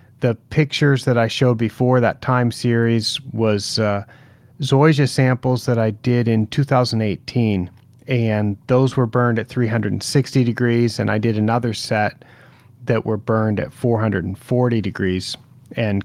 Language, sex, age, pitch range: English, male, 40-59, 110-130 Hz